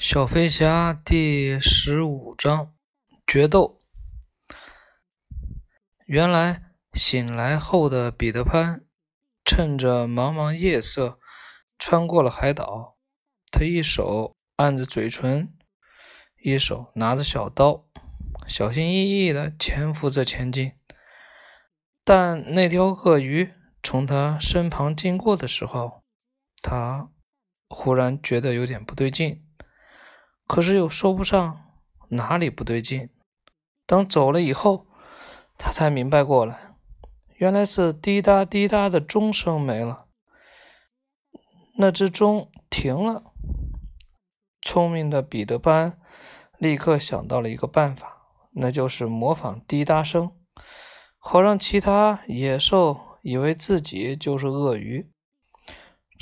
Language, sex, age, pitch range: Chinese, male, 20-39, 130-180 Hz